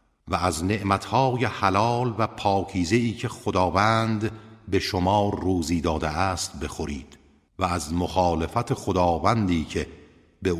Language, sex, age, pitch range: Persian, male, 50-69, 85-110 Hz